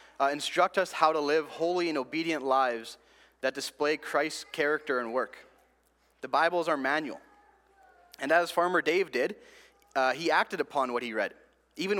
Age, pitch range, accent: 30-49, 135-175 Hz, American